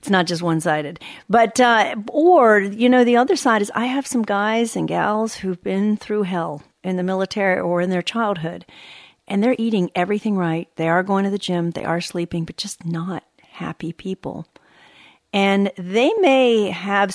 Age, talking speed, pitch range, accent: 50-69, 185 wpm, 175-210 Hz, American